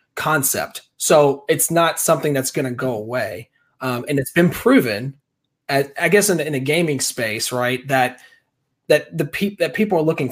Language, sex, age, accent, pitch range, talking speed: English, male, 30-49, American, 130-165 Hz, 185 wpm